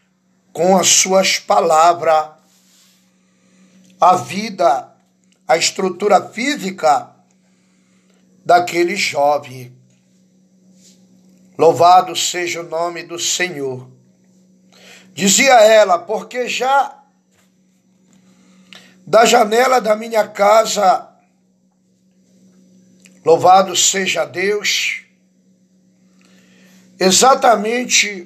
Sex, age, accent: male, 60-79, Brazilian